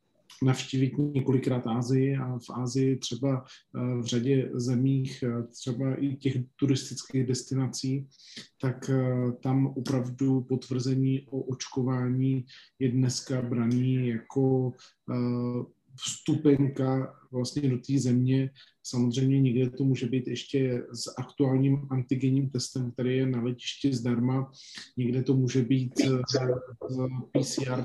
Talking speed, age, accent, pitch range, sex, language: 110 wpm, 40-59, native, 125-135 Hz, male, Czech